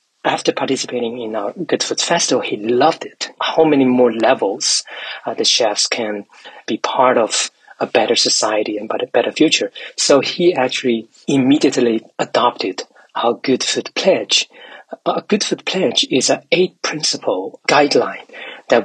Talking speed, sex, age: 145 wpm, male, 40-59